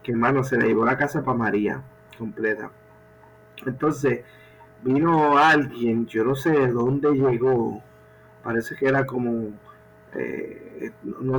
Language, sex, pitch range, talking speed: Spanish, male, 110-145 Hz, 130 wpm